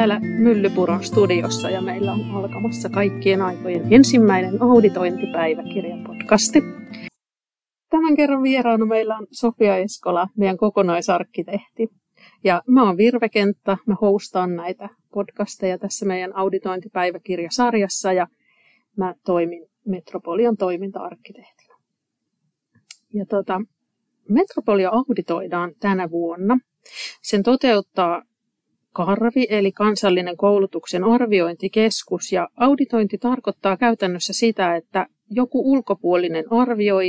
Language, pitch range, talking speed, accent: Finnish, 185-230 Hz, 95 wpm, native